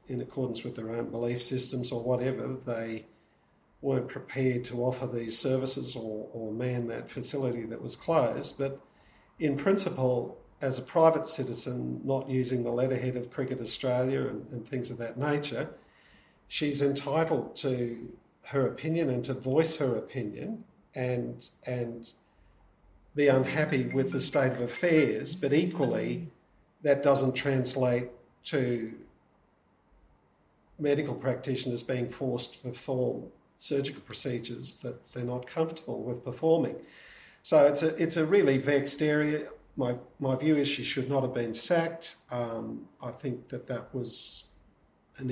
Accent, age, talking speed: Australian, 50-69, 145 wpm